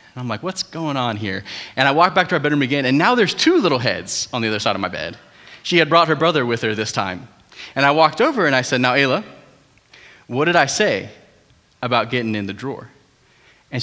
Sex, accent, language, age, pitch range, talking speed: male, American, English, 30-49, 135-205 Hz, 240 wpm